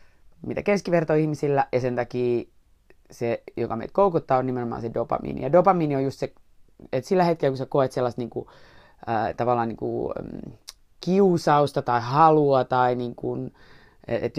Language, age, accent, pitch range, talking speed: Finnish, 20-39, native, 120-140 Hz, 160 wpm